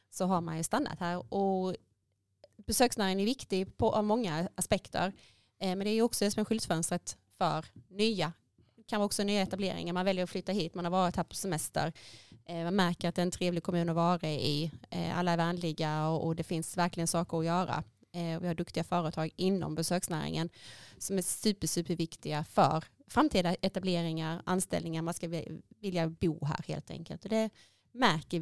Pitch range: 170-205 Hz